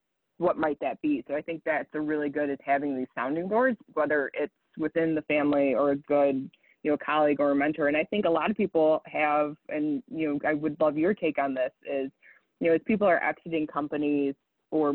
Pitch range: 140-160 Hz